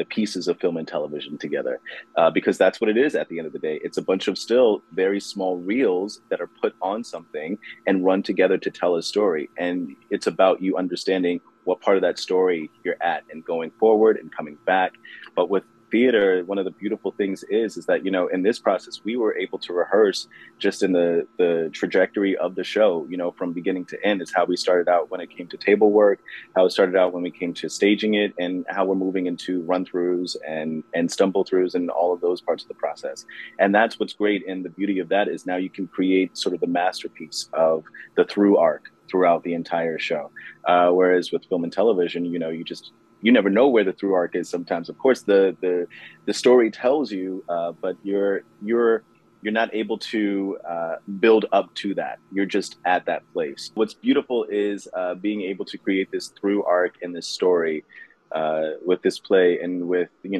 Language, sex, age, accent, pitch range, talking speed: English, male, 30-49, American, 85-100 Hz, 220 wpm